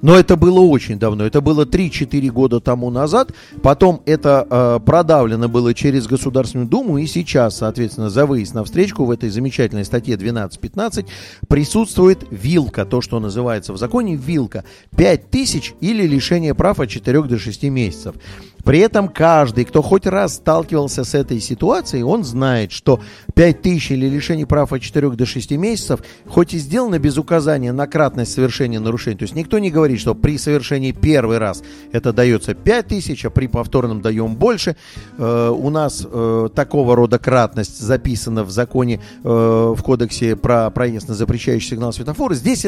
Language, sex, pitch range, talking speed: Russian, male, 115-155 Hz, 160 wpm